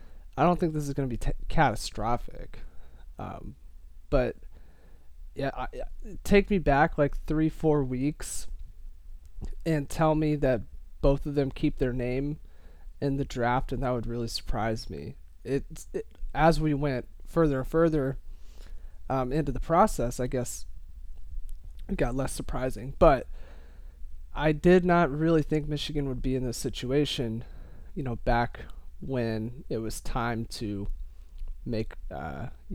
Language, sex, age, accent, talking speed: English, male, 20-39, American, 145 wpm